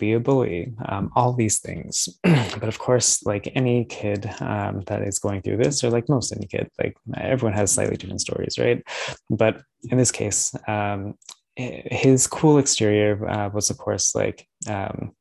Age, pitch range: 20-39, 100-120 Hz